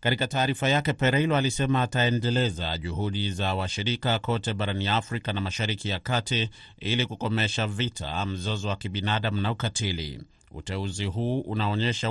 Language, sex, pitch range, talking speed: Swahili, male, 100-120 Hz, 135 wpm